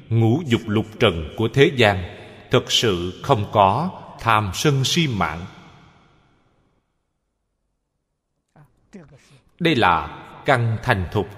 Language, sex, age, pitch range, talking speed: Vietnamese, male, 20-39, 100-155 Hz, 105 wpm